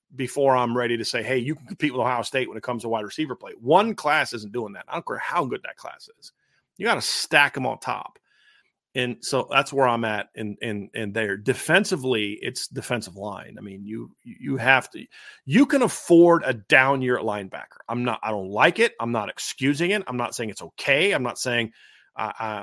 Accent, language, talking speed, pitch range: American, English, 230 wpm, 115-145 Hz